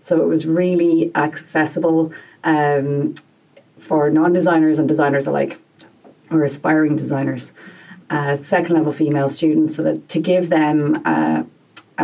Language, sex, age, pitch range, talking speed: English, female, 30-49, 145-170 Hz, 120 wpm